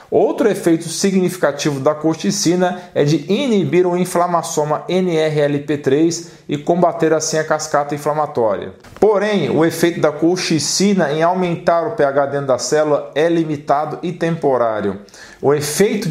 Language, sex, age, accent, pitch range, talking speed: Portuguese, male, 40-59, Brazilian, 145-170 Hz, 130 wpm